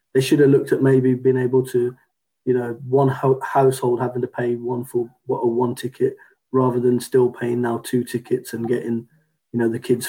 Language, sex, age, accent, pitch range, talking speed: English, male, 20-39, British, 125-135 Hz, 215 wpm